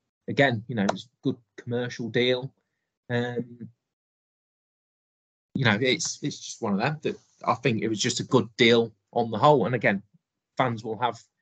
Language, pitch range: English, 110-125 Hz